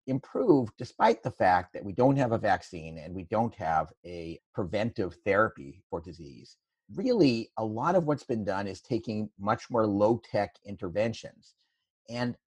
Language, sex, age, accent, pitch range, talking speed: English, male, 50-69, American, 95-125 Hz, 160 wpm